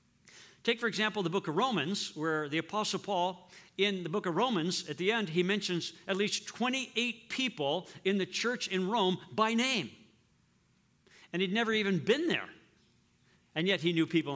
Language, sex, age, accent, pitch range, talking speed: English, male, 60-79, American, 170-220 Hz, 180 wpm